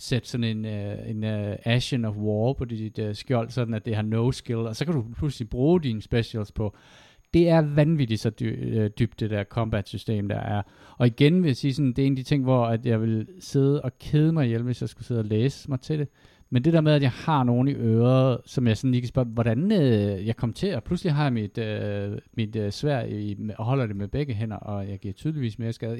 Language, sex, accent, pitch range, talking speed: Danish, male, native, 110-135 Hz, 255 wpm